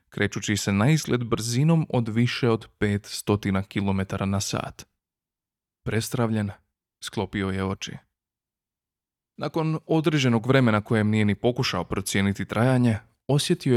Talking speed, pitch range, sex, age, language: 110 wpm, 105-130 Hz, male, 30-49, Croatian